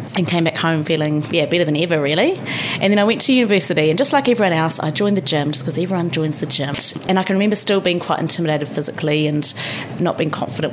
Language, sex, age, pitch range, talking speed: English, female, 30-49, 160-195 Hz, 245 wpm